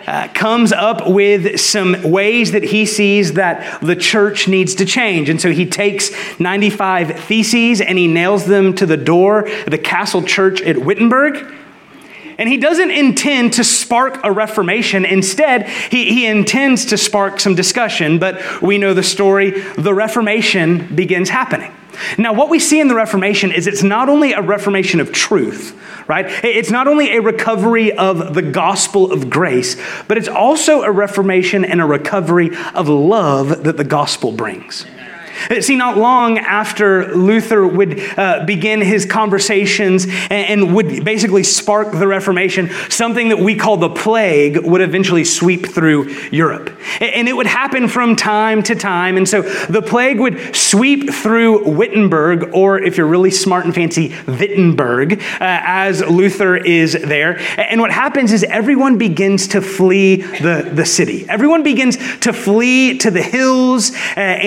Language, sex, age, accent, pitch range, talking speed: English, male, 30-49, American, 185-225 Hz, 165 wpm